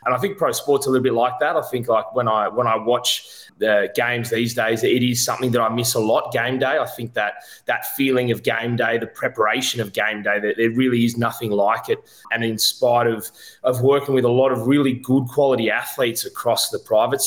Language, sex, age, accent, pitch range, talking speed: English, male, 20-39, Australian, 115-130 Hz, 240 wpm